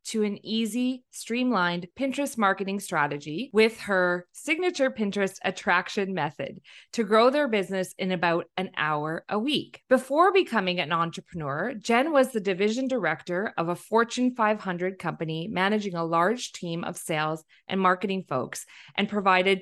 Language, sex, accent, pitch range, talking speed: English, female, American, 175-230 Hz, 145 wpm